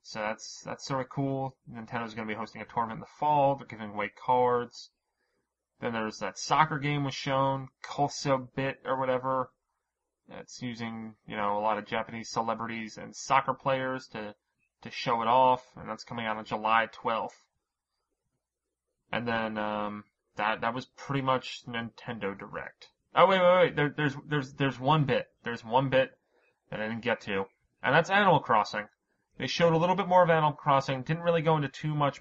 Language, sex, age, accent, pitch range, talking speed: English, male, 20-39, American, 110-140 Hz, 190 wpm